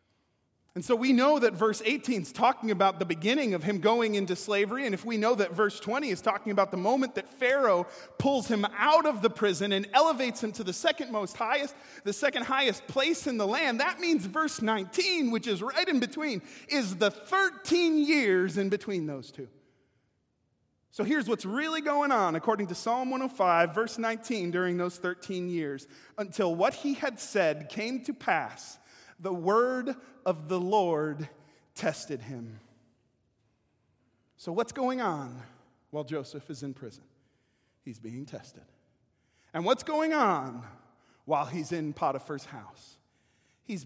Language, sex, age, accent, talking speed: English, male, 30-49, American, 165 wpm